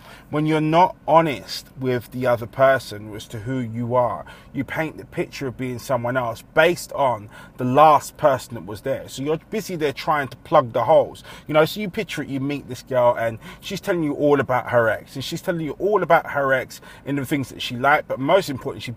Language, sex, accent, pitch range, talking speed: English, male, British, 125-165 Hz, 235 wpm